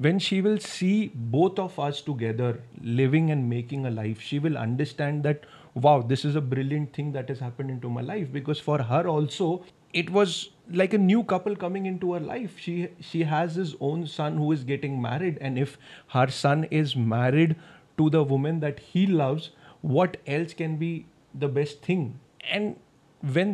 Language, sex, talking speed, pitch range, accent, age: English, male, 190 wpm, 140-185 Hz, Indian, 30-49